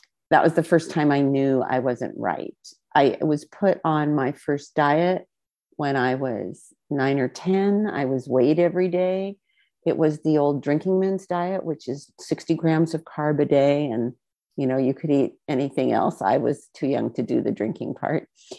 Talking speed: 195 wpm